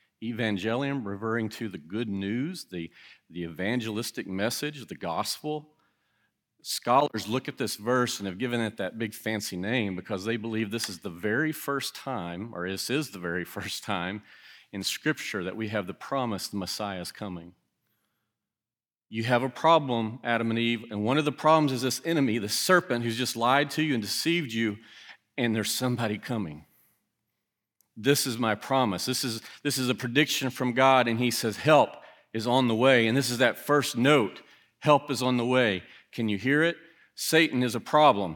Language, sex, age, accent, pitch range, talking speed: English, male, 40-59, American, 105-135 Hz, 190 wpm